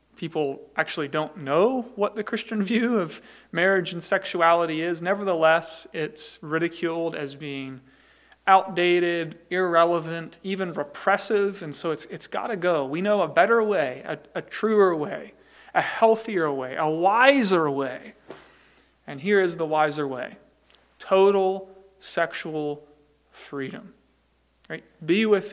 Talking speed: 130 wpm